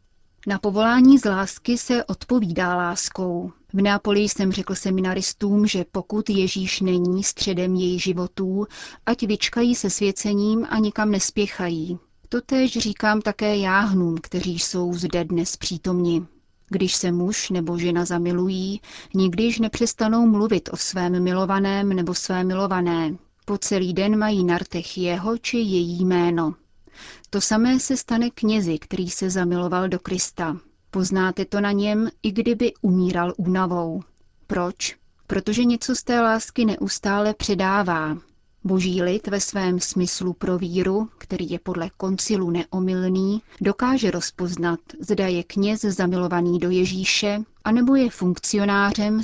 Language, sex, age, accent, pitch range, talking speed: Czech, female, 30-49, native, 180-210 Hz, 135 wpm